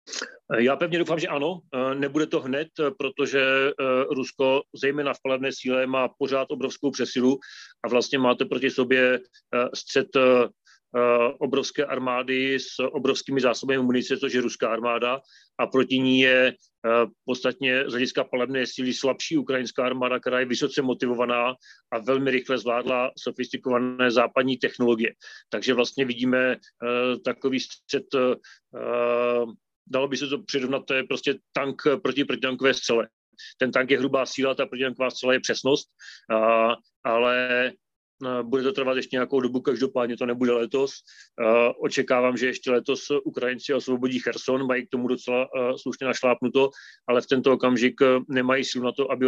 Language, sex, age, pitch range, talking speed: Slovak, male, 40-59, 125-135 Hz, 140 wpm